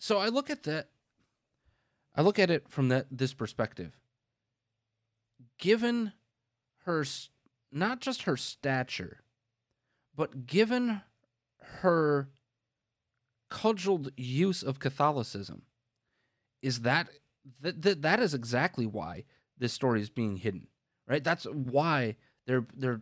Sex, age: male, 30-49